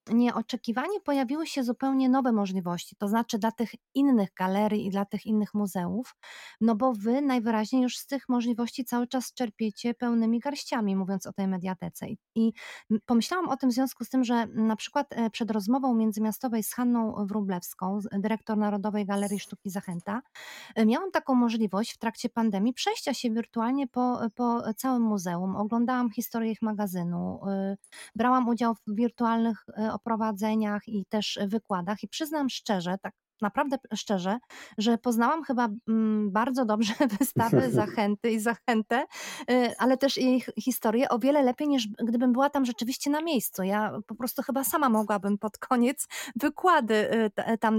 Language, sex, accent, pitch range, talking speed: Polish, female, native, 215-255 Hz, 150 wpm